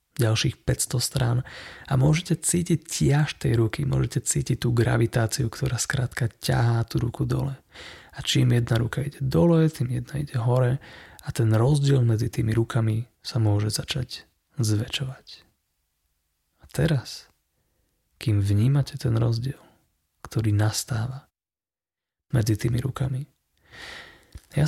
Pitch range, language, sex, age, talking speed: 110-140 Hz, Slovak, male, 30-49, 125 wpm